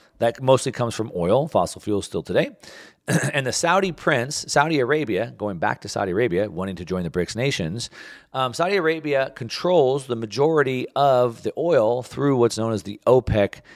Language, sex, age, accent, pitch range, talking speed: English, male, 40-59, American, 100-155 Hz, 180 wpm